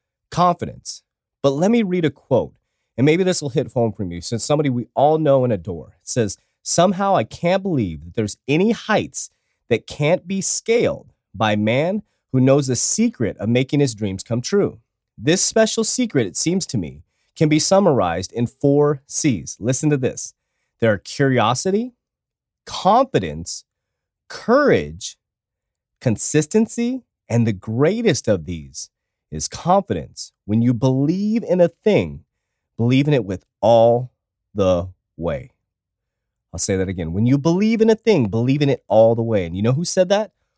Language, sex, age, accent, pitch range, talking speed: English, male, 30-49, American, 110-170 Hz, 165 wpm